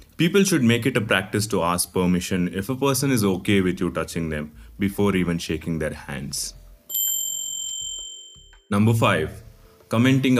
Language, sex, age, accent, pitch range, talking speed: English, male, 30-49, Indian, 90-110 Hz, 150 wpm